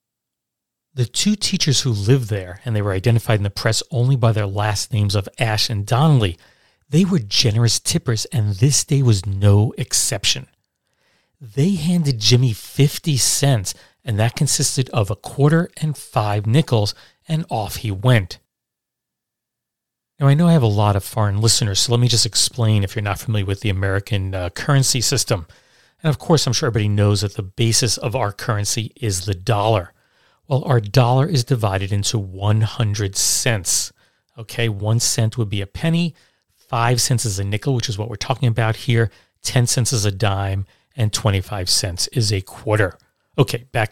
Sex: male